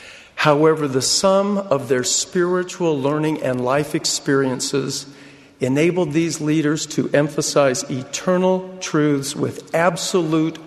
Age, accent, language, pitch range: 50-69, American, English, 135-165 Hz